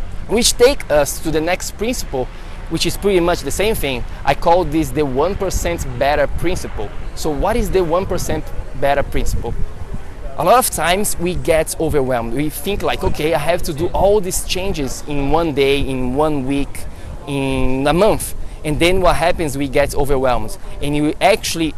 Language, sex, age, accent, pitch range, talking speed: English, male, 20-39, Brazilian, 140-185 Hz, 180 wpm